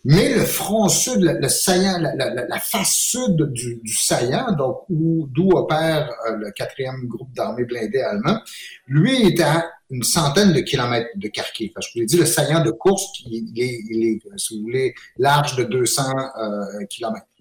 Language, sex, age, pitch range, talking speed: French, male, 50-69, 130-190 Hz, 195 wpm